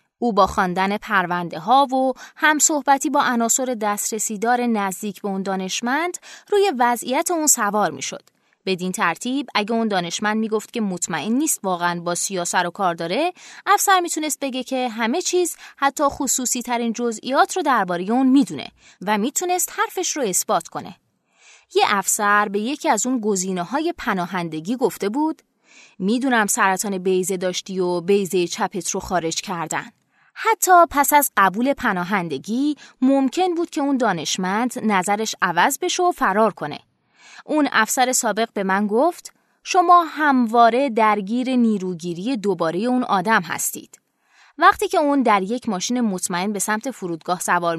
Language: Persian